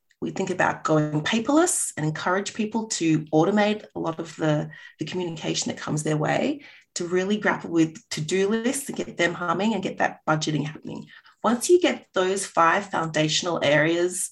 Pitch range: 160-215 Hz